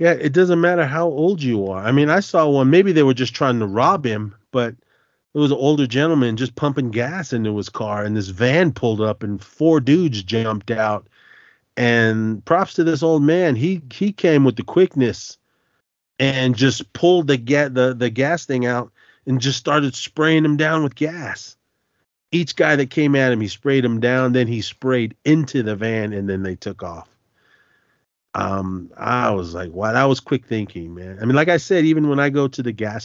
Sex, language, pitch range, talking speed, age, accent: male, English, 105-145 Hz, 210 wpm, 40-59, American